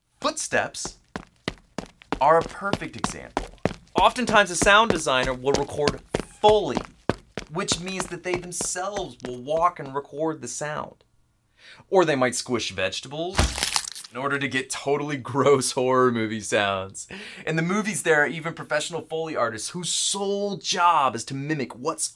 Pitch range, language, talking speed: 120-175 Hz, English, 145 wpm